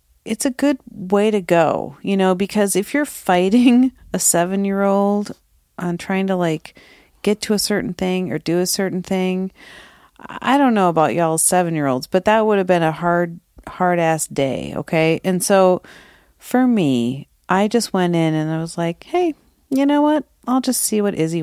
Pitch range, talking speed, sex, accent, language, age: 160-235 Hz, 185 wpm, female, American, English, 40-59